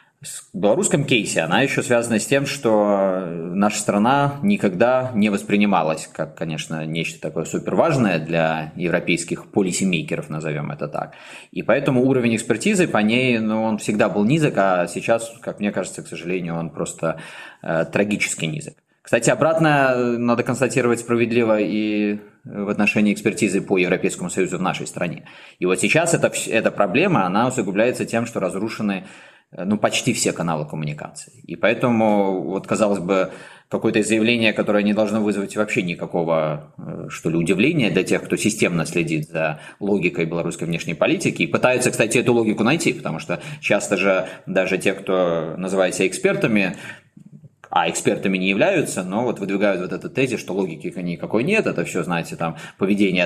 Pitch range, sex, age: 90-120 Hz, male, 20-39